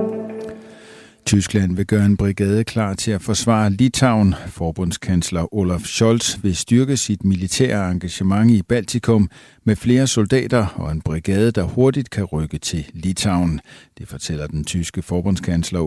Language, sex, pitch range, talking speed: Danish, male, 85-115 Hz, 140 wpm